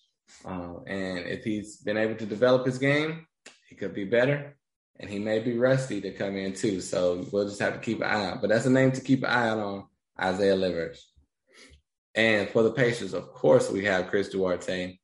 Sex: male